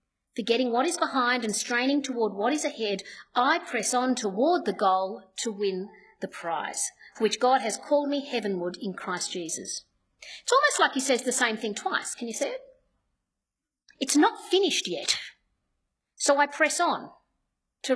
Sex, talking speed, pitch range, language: female, 175 wpm, 220-325 Hz, English